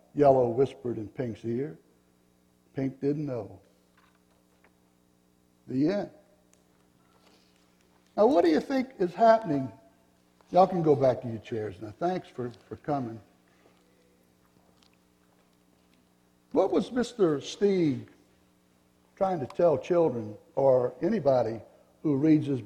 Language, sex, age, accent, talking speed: English, male, 60-79, American, 110 wpm